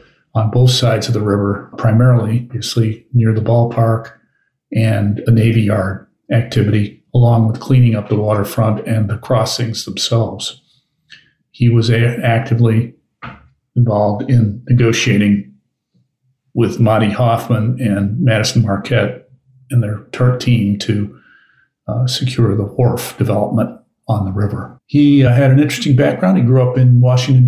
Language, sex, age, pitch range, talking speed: English, male, 50-69, 115-130 Hz, 140 wpm